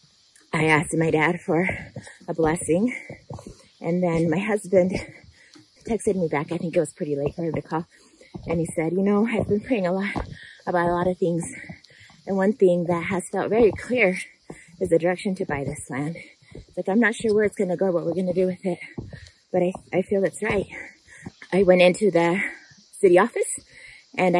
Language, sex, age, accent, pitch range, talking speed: English, female, 30-49, American, 170-205 Hz, 200 wpm